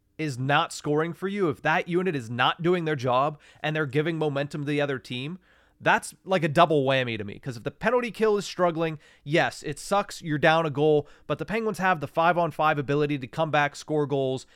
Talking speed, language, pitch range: 225 wpm, English, 135-175 Hz